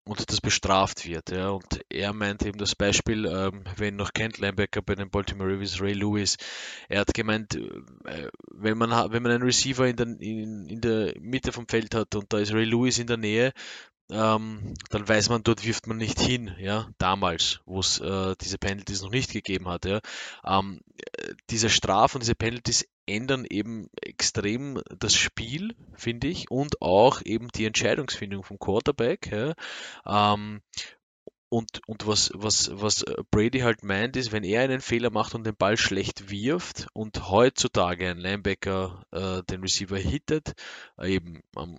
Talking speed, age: 170 wpm, 20-39